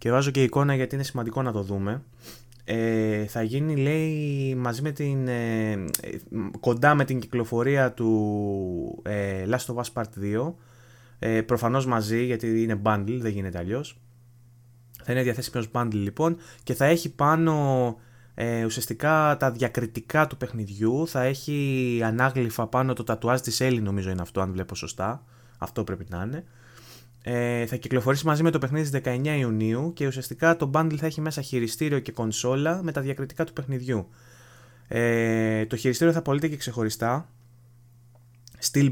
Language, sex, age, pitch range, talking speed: Greek, male, 20-39, 115-135 Hz, 160 wpm